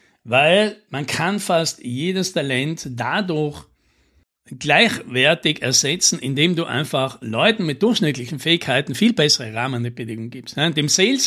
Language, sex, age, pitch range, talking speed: German, male, 60-79, 135-185 Hz, 115 wpm